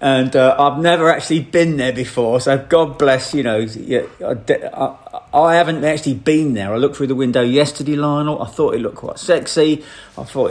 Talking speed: 200 wpm